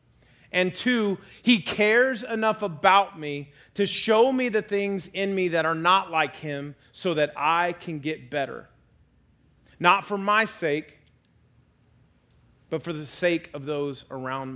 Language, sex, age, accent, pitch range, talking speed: English, male, 30-49, American, 150-185 Hz, 150 wpm